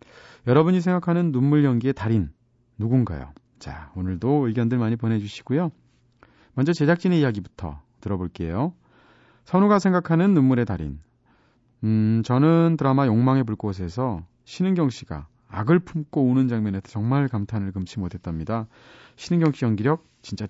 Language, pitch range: Korean, 100-145 Hz